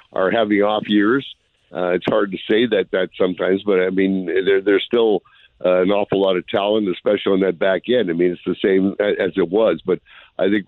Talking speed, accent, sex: 220 wpm, American, male